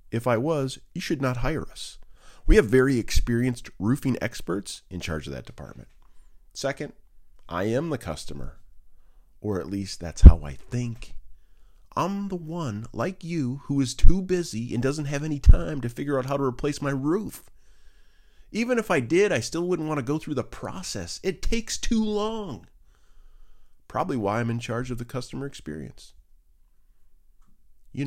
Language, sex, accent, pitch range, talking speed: English, male, American, 80-130 Hz, 170 wpm